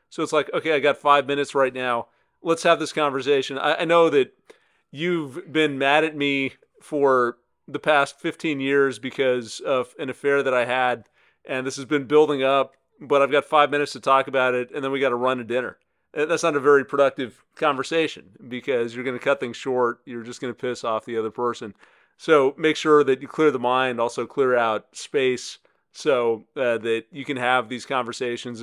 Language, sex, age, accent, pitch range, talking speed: English, male, 40-59, American, 125-150 Hz, 205 wpm